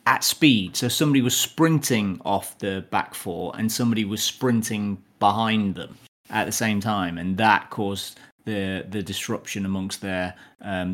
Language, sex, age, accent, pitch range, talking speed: English, male, 30-49, British, 100-120 Hz, 160 wpm